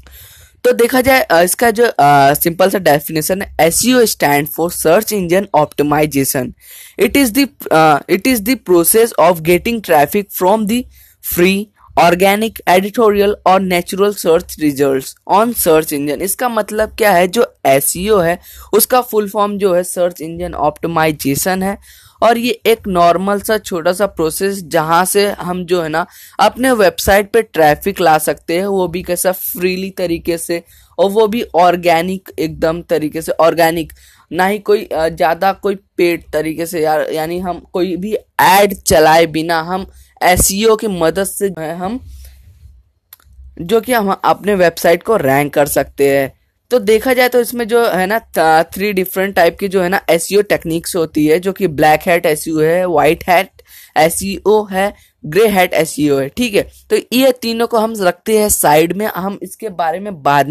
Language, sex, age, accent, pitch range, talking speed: Hindi, female, 10-29, native, 160-210 Hz, 160 wpm